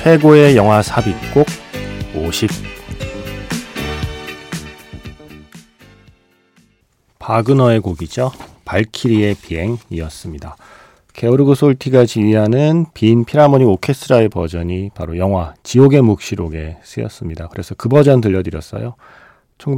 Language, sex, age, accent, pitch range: Korean, male, 40-59, native, 90-130 Hz